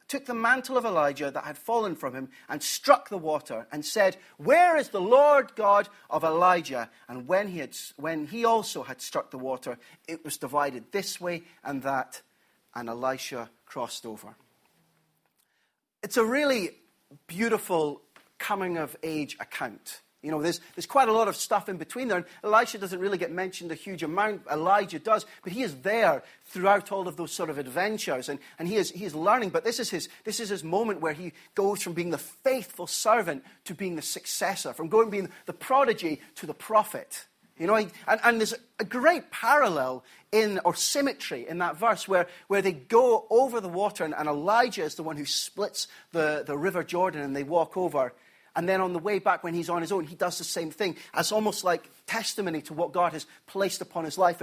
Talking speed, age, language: 205 wpm, 40-59, English